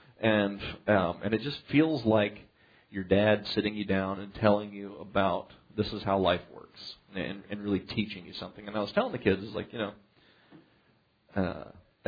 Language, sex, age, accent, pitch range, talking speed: English, male, 40-59, American, 95-110 Hz, 195 wpm